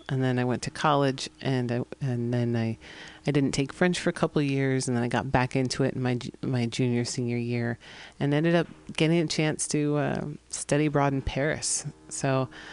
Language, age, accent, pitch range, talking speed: English, 40-59, American, 125-155 Hz, 215 wpm